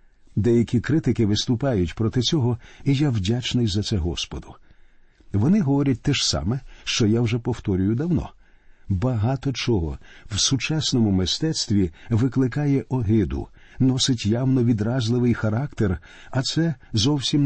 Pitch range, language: 100-140 Hz, Ukrainian